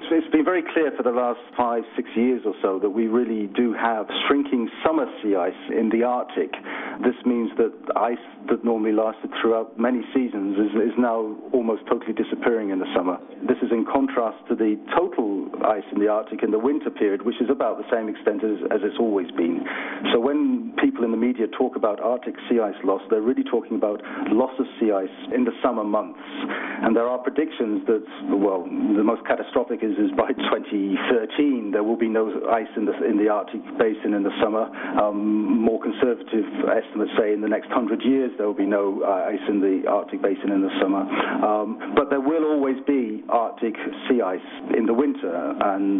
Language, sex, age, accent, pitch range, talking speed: English, male, 50-69, British, 105-130 Hz, 205 wpm